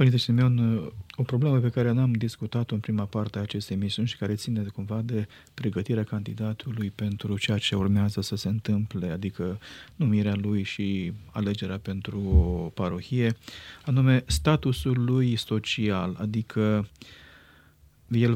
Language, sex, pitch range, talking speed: Romanian, male, 105-130 Hz, 135 wpm